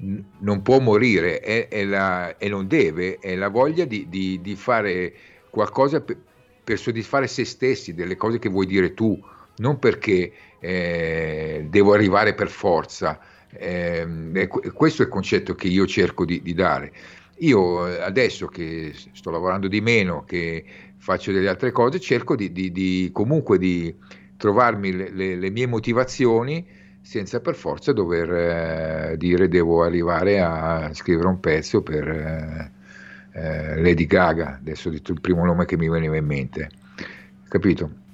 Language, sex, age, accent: Italian, male, 50-69, native